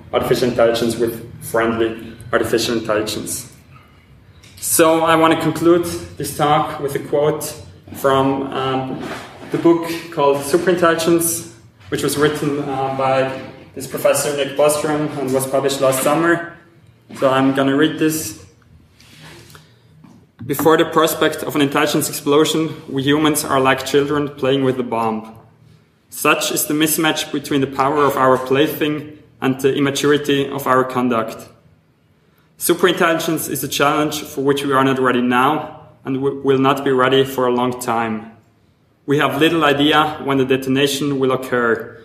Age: 20-39